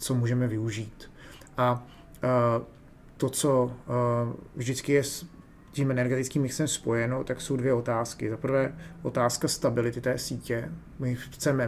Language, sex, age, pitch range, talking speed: Czech, male, 30-49, 120-140 Hz, 140 wpm